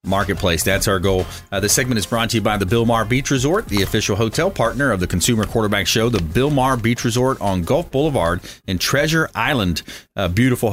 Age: 30-49